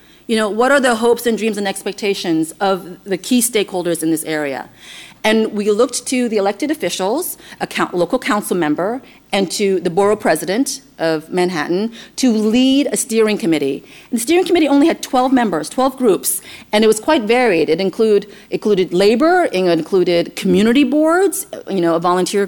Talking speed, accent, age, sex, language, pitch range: 180 wpm, American, 40-59, female, English, 185-250 Hz